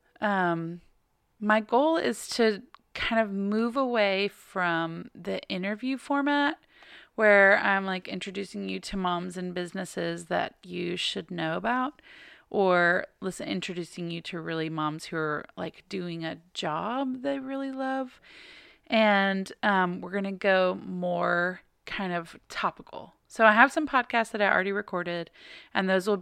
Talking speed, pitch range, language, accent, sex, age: 150 wpm, 180-240 Hz, English, American, female, 30-49